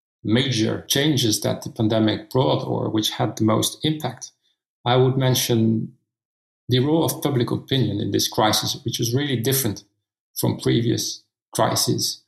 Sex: male